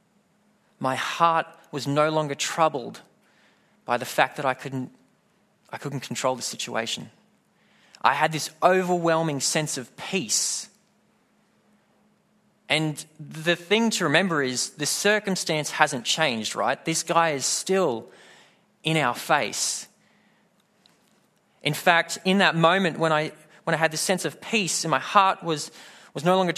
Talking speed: 140 wpm